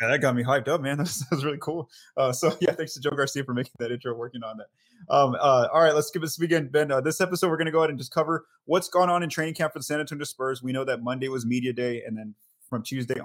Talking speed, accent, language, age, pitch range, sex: 310 wpm, American, English, 20-39, 120-150 Hz, male